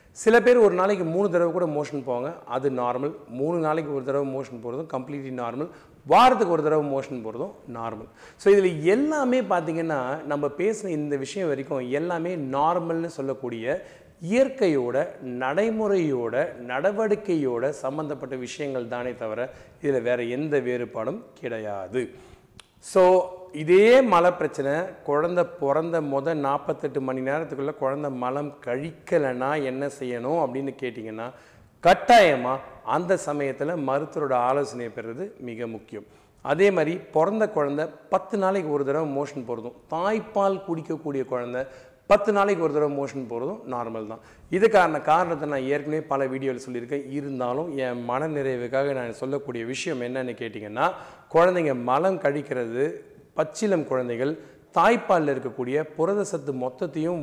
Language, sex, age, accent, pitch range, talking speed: Tamil, male, 40-59, native, 130-170 Hz, 125 wpm